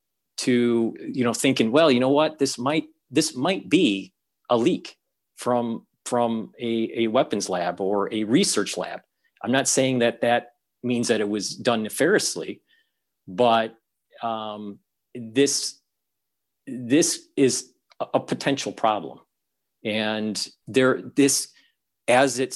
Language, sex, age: English, male, 40-59